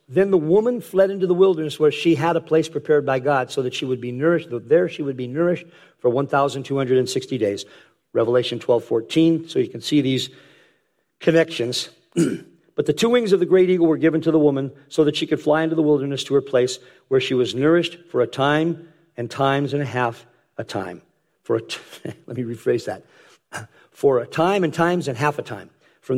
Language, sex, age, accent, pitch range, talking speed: English, male, 50-69, American, 125-165 Hz, 215 wpm